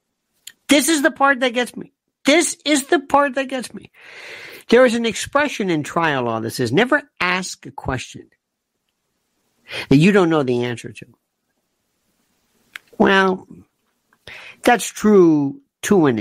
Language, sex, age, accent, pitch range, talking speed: English, male, 60-79, American, 170-260 Hz, 145 wpm